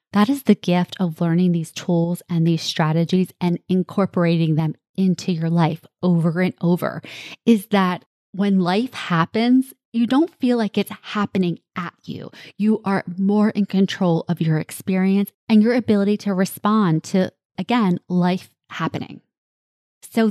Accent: American